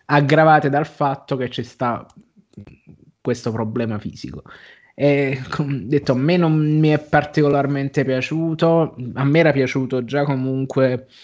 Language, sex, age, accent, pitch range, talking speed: Italian, male, 20-39, native, 120-140 Hz, 130 wpm